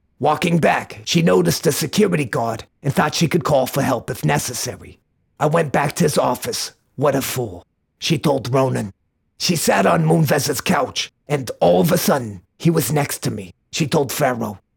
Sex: male